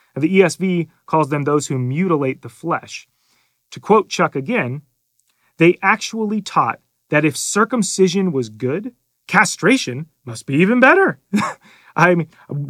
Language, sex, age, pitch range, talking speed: English, male, 30-49, 135-195 Hz, 130 wpm